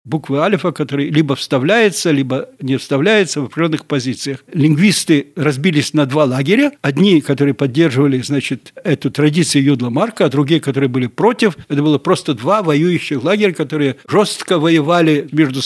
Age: 60-79